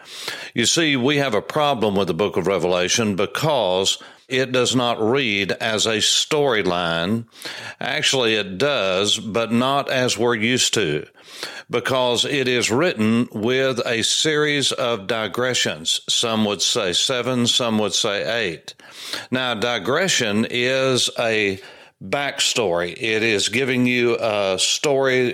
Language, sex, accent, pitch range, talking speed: English, male, American, 100-125 Hz, 135 wpm